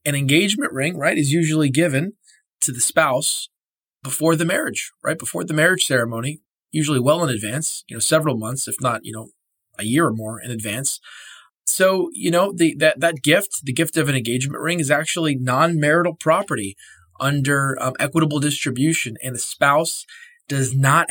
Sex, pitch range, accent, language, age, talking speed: male, 135-165 Hz, American, English, 20-39, 175 wpm